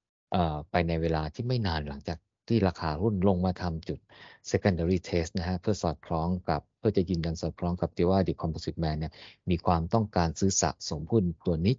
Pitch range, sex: 85-105 Hz, male